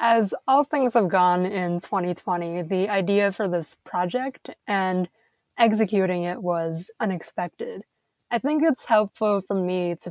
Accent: American